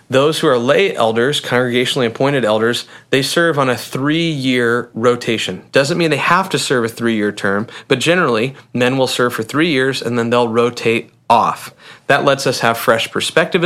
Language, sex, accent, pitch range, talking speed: English, male, American, 115-140 Hz, 185 wpm